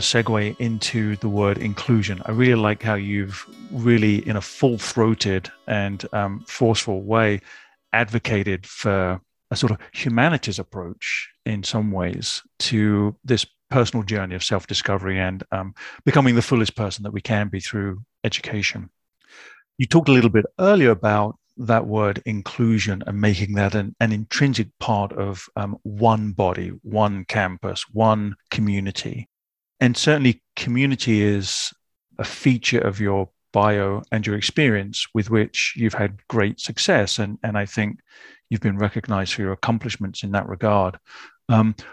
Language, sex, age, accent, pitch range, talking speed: English, male, 40-59, British, 100-115 Hz, 145 wpm